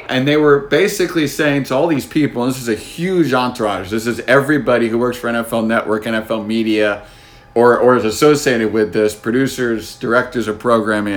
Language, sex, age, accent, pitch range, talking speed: English, male, 50-69, American, 115-145 Hz, 190 wpm